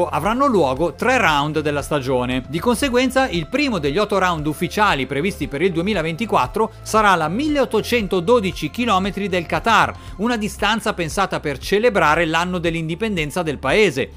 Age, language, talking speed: 40-59, Italian, 140 wpm